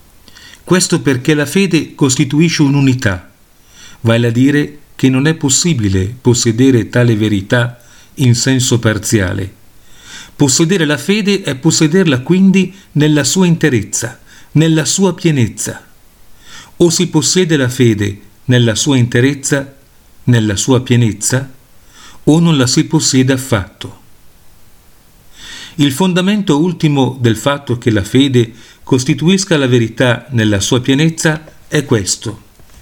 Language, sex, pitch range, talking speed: Italian, male, 120-155 Hz, 115 wpm